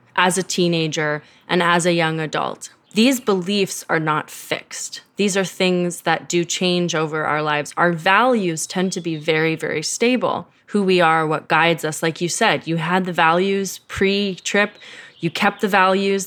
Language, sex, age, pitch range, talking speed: English, female, 20-39, 160-200 Hz, 175 wpm